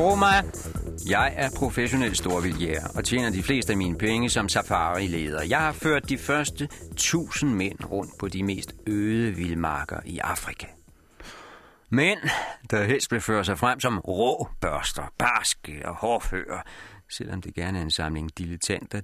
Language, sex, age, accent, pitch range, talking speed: Danish, male, 40-59, native, 85-130 Hz, 150 wpm